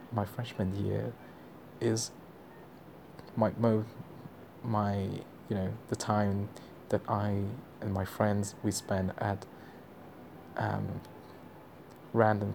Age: 20-39